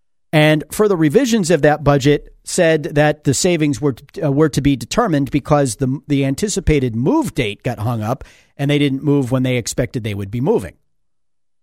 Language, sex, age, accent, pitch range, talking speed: English, male, 50-69, American, 140-225 Hz, 190 wpm